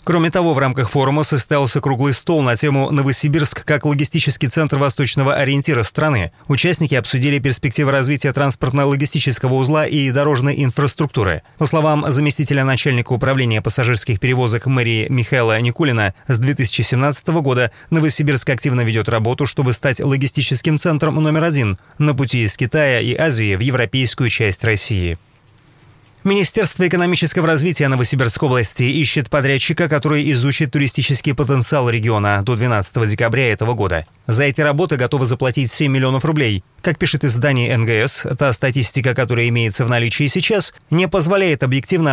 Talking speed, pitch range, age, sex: 140 wpm, 120-150 Hz, 30-49, male